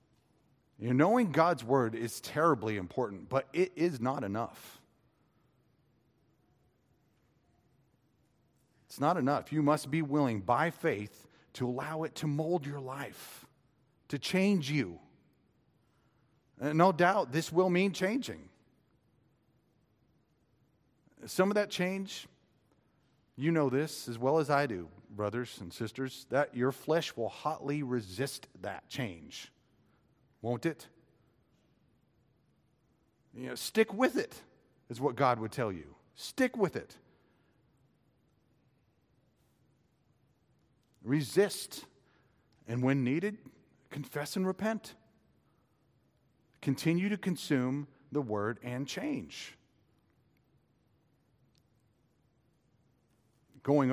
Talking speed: 100 wpm